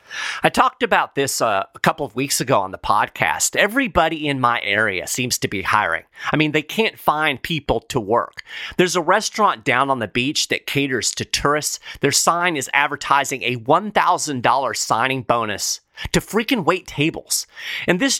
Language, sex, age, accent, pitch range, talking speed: English, male, 30-49, American, 125-180 Hz, 175 wpm